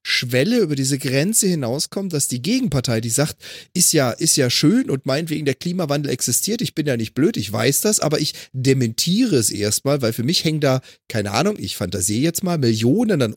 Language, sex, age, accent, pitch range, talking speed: German, male, 30-49, German, 115-170 Hz, 205 wpm